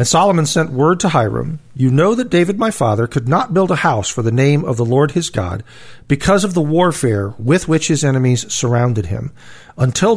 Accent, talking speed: American, 210 wpm